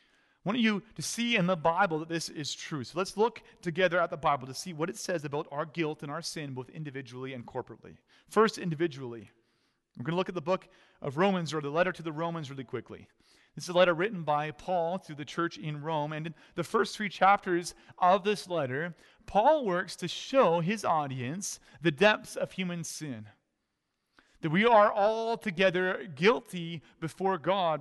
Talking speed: 200 wpm